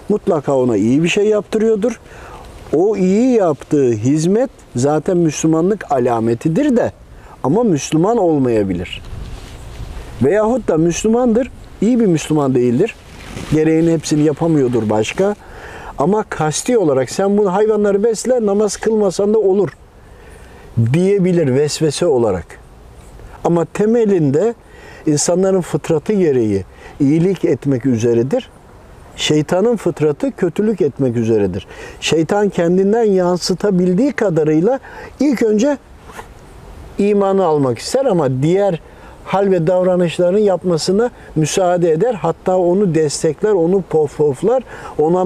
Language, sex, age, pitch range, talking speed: Turkish, male, 50-69, 150-205 Hz, 105 wpm